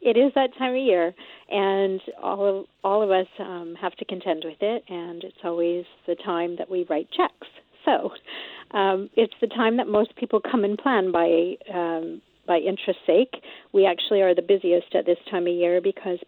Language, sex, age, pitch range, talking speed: English, female, 50-69, 175-205 Hz, 200 wpm